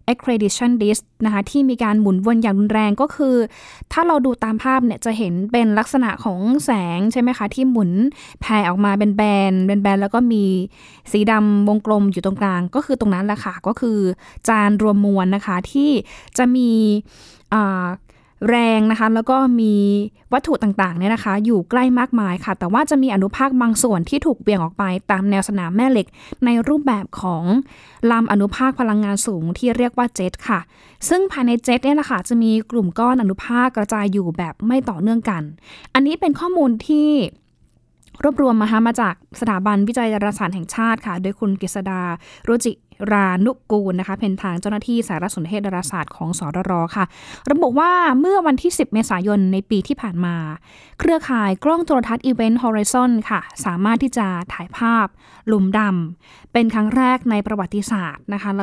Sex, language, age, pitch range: female, Thai, 10-29, 200-245 Hz